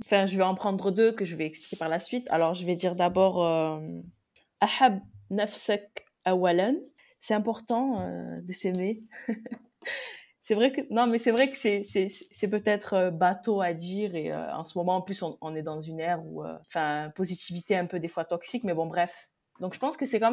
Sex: female